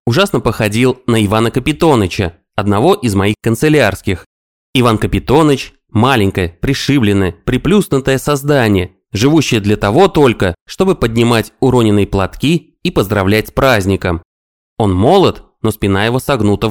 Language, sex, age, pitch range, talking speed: Russian, male, 20-39, 100-135 Hz, 120 wpm